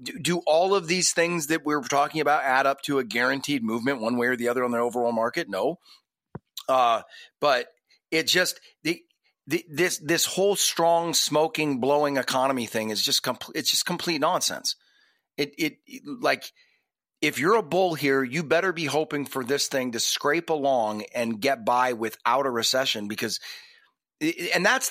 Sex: male